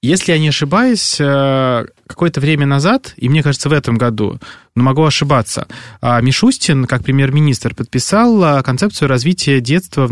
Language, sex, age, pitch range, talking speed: Russian, male, 20-39, 125-145 Hz, 140 wpm